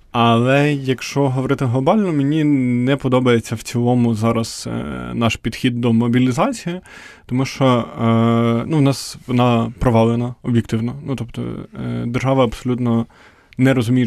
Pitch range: 115-140 Hz